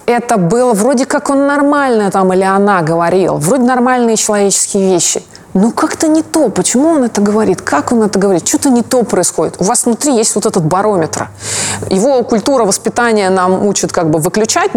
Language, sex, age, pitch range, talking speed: Russian, female, 20-39, 180-240 Hz, 185 wpm